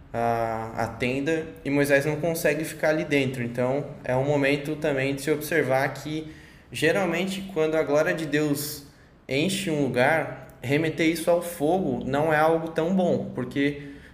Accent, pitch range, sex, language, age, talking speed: Brazilian, 130-155 Hz, male, Portuguese, 20-39, 155 wpm